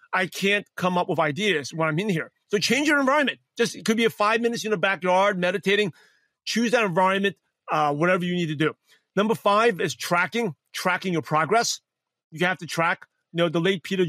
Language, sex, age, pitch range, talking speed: English, male, 40-59, 175-215 Hz, 215 wpm